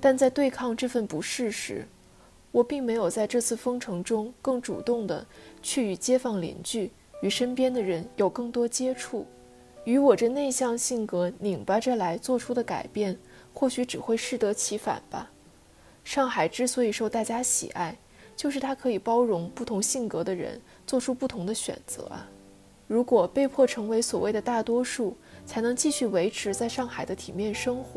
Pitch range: 195-250 Hz